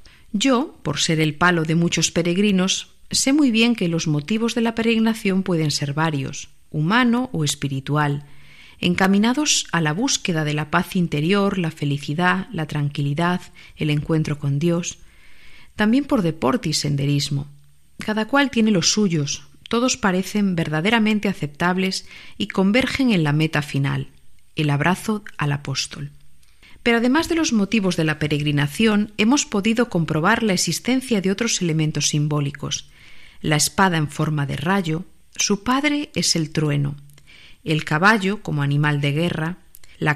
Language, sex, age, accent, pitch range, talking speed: Spanish, female, 40-59, Spanish, 150-205 Hz, 145 wpm